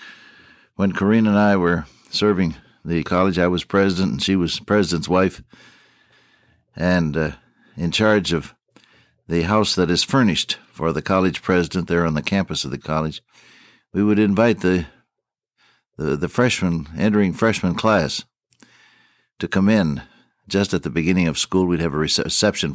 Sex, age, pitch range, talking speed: male, 60-79, 80-100 Hz, 160 wpm